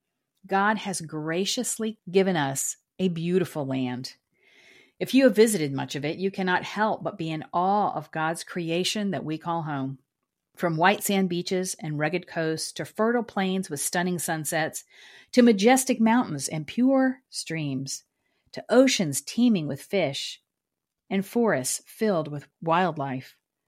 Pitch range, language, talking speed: 155-210 Hz, English, 145 wpm